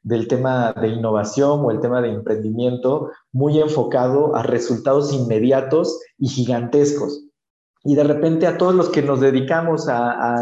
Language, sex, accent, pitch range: Spanish, male, Mexican, 125-155 Hz